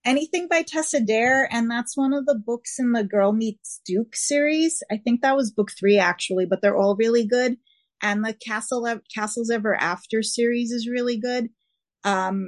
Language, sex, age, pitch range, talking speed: English, female, 30-49, 200-245 Hz, 190 wpm